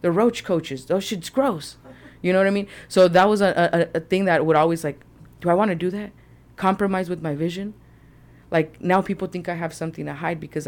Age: 30-49